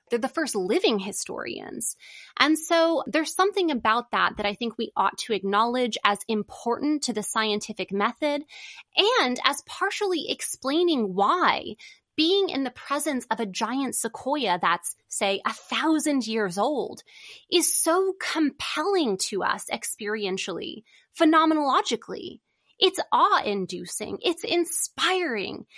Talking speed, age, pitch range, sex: 125 wpm, 20-39, 210-315 Hz, female